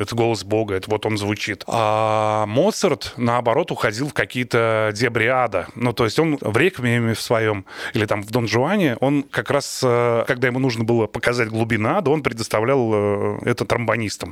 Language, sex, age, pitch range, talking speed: Russian, male, 20-39, 110-145 Hz, 170 wpm